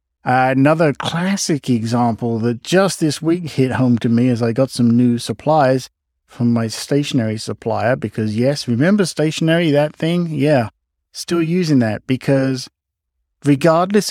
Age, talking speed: 50-69, 145 wpm